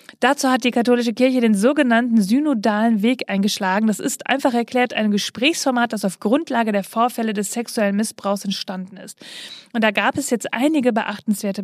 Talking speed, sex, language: 170 wpm, female, German